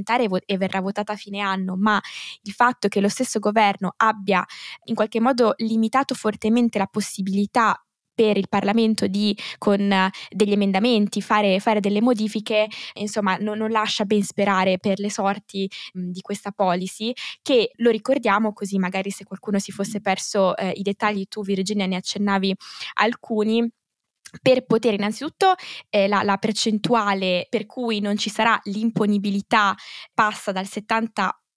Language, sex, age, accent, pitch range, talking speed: Italian, female, 20-39, native, 195-220 Hz, 150 wpm